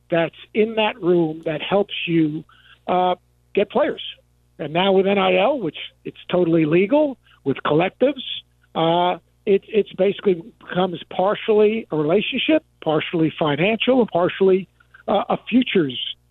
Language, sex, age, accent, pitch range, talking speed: English, male, 50-69, American, 150-195 Hz, 130 wpm